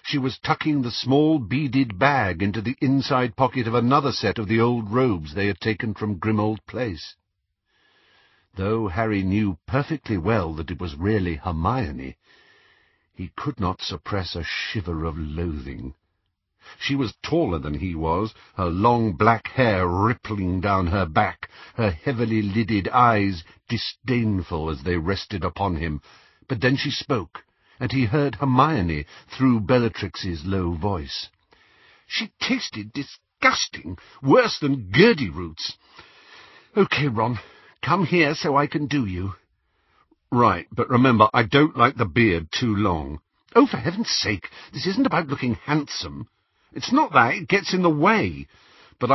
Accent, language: British, English